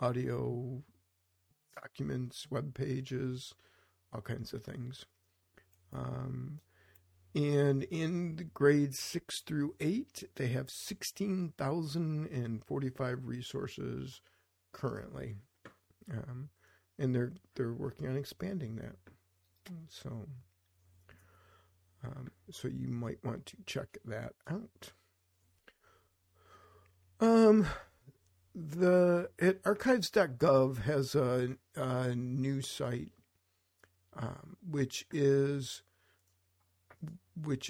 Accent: American